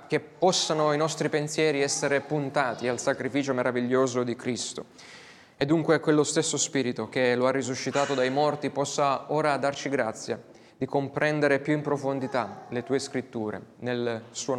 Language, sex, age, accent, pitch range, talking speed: Italian, male, 20-39, native, 125-160 Hz, 150 wpm